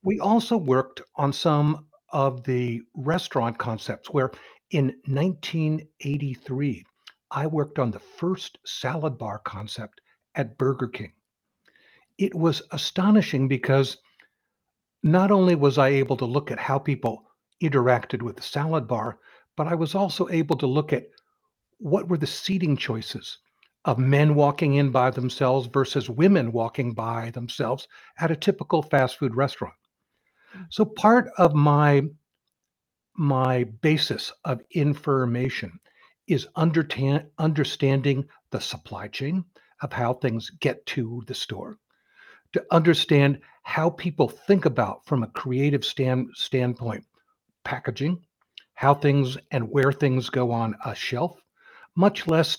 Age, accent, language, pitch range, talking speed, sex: 60-79, American, English, 130-160 Hz, 130 wpm, male